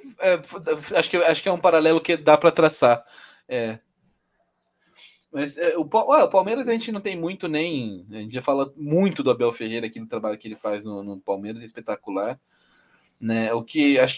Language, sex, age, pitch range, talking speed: Portuguese, male, 20-39, 120-170 Hz, 205 wpm